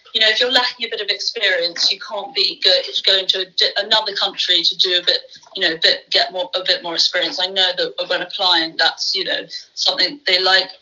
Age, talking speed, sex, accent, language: 30-49, 215 wpm, female, British, English